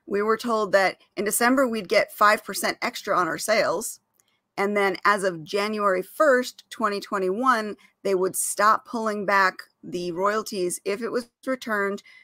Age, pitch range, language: 40-59, 190-240 Hz, English